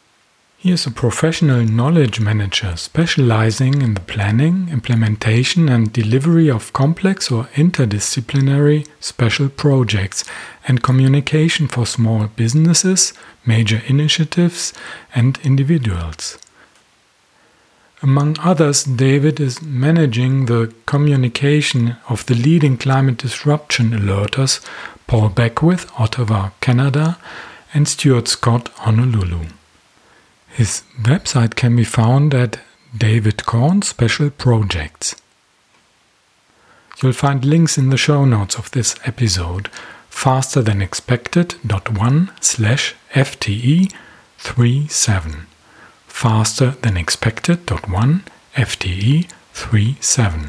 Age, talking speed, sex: 40-59, 85 wpm, male